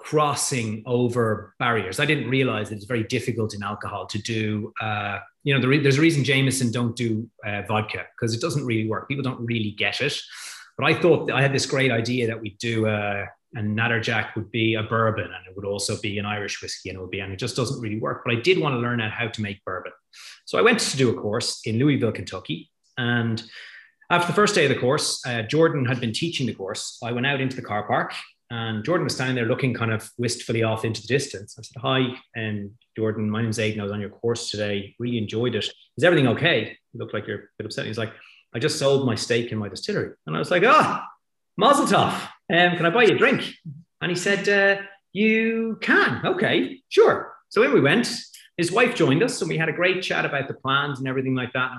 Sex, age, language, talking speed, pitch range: male, 30-49, English, 245 wpm, 110-135 Hz